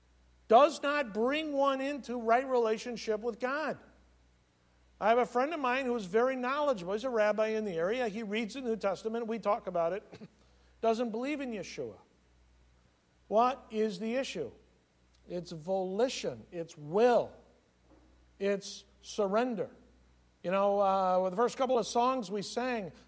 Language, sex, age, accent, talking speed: English, male, 60-79, American, 155 wpm